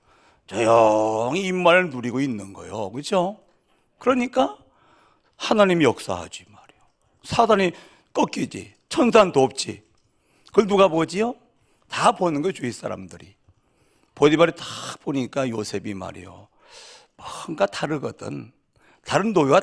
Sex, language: male, Korean